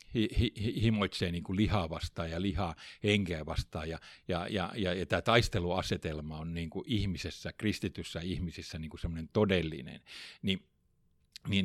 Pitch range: 85-105 Hz